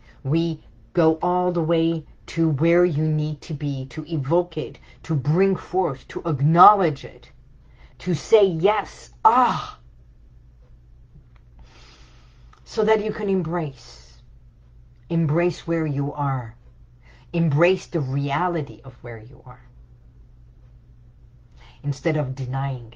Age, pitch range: 50-69, 125-175 Hz